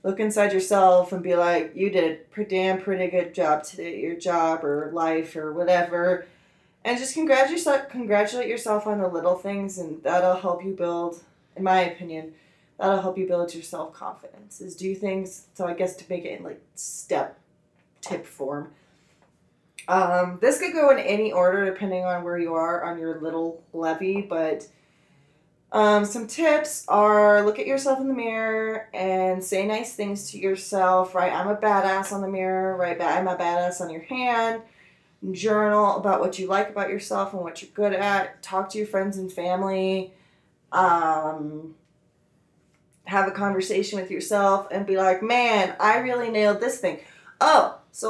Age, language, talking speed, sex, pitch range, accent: 20-39, English, 175 wpm, female, 175-210 Hz, American